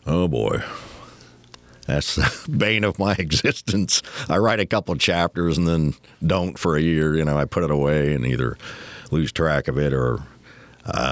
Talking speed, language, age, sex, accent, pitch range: 180 wpm, English, 60-79, male, American, 65-85 Hz